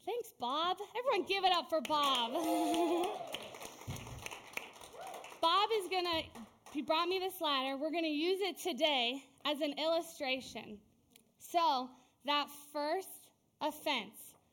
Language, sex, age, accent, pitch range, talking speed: English, female, 20-39, American, 270-330 Hz, 125 wpm